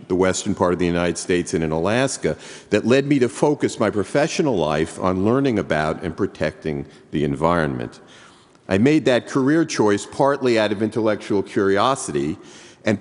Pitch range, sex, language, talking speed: 90-130 Hz, male, English, 165 wpm